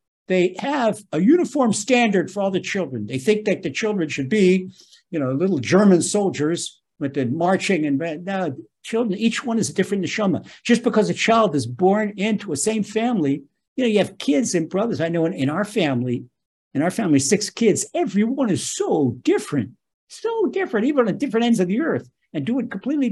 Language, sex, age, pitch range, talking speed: English, male, 60-79, 165-230 Hz, 195 wpm